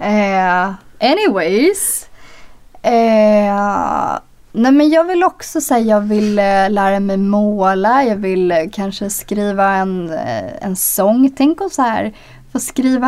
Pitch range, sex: 195-240 Hz, female